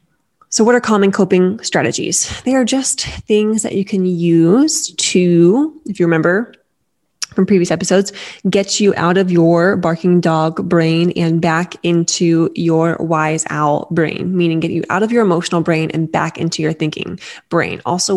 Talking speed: 170 wpm